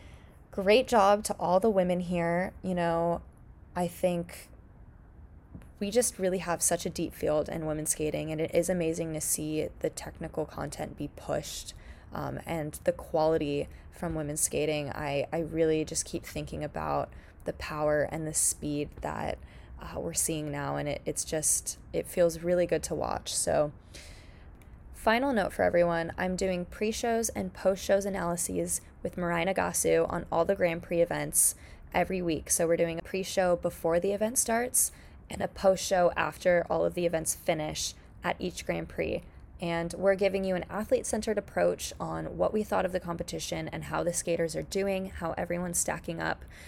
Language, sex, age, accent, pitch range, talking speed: English, female, 20-39, American, 150-190 Hz, 170 wpm